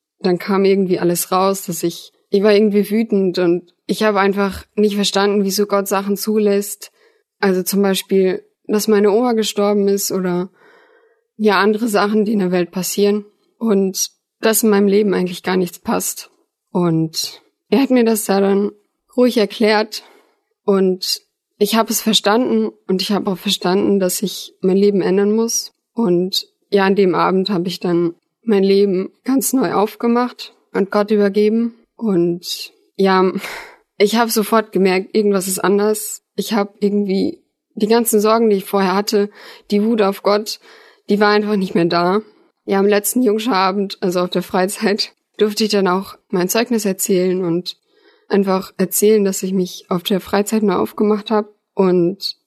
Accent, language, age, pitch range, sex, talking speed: German, German, 20-39, 190-220 Hz, female, 165 wpm